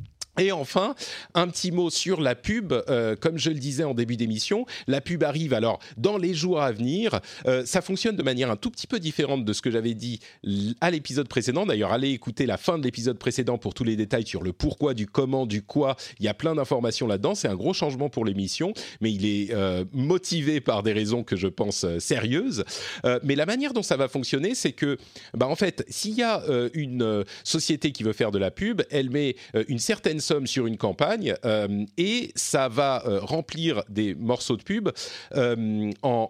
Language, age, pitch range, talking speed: French, 40-59, 110-160 Hz, 220 wpm